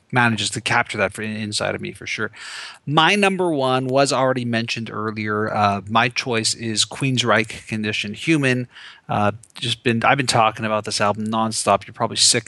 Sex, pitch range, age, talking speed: male, 110-125 Hz, 30-49, 185 wpm